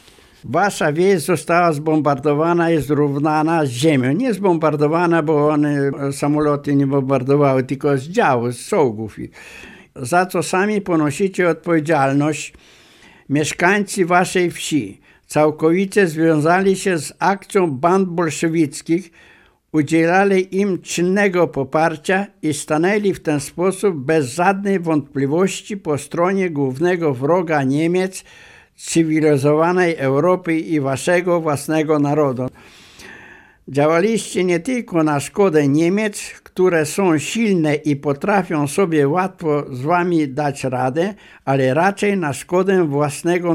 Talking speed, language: 110 wpm, Polish